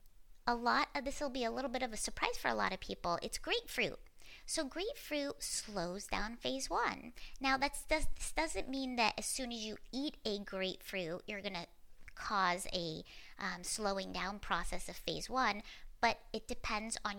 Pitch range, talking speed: 190-255 Hz, 180 wpm